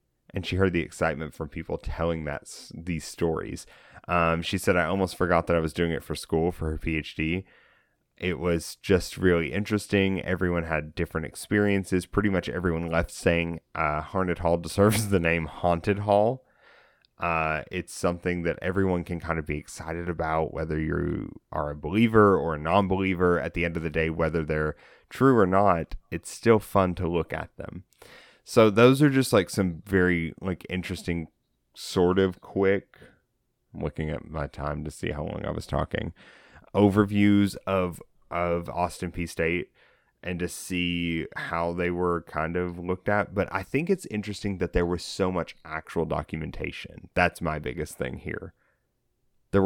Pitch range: 80-100 Hz